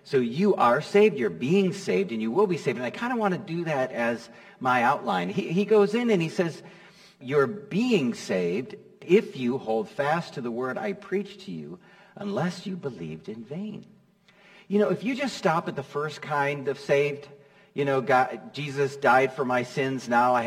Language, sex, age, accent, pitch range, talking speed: English, male, 50-69, American, 145-200 Hz, 205 wpm